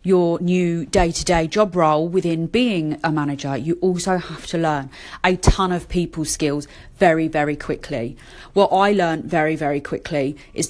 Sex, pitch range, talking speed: female, 155-190 Hz, 165 wpm